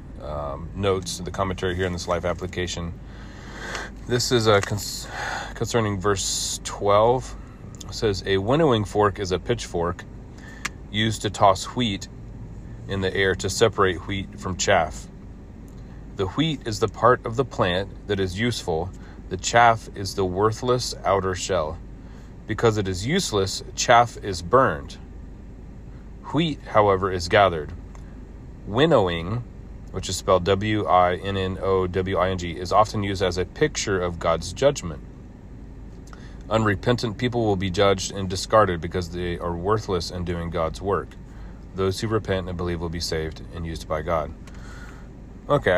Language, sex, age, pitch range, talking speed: English, male, 30-49, 90-110 Hz, 140 wpm